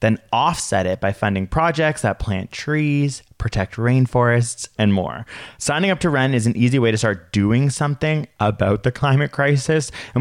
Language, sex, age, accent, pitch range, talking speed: English, male, 20-39, American, 105-140 Hz, 175 wpm